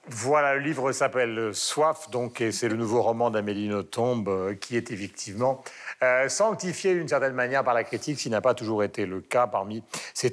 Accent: French